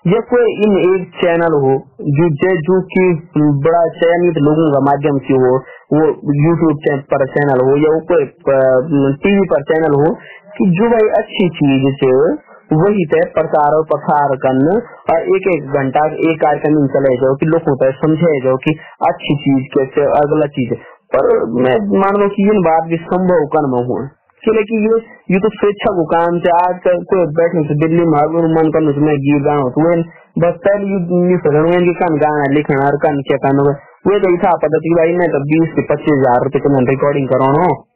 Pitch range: 145-180 Hz